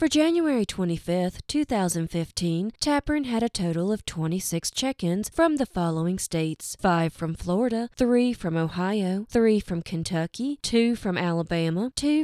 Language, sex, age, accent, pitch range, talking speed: English, female, 20-39, American, 170-245 Hz, 135 wpm